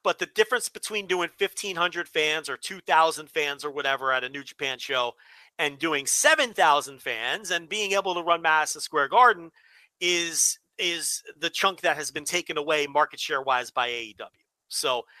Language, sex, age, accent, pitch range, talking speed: English, male, 40-59, American, 150-195 Hz, 185 wpm